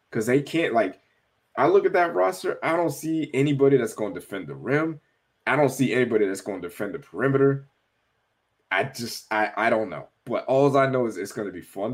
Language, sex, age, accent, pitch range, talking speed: English, male, 20-39, American, 120-165 Hz, 225 wpm